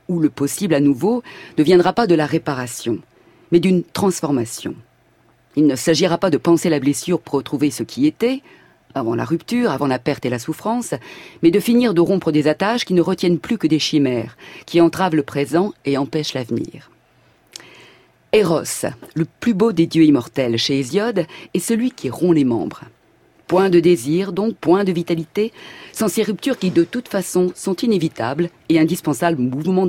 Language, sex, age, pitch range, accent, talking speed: French, female, 50-69, 150-190 Hz, French, 185 wpm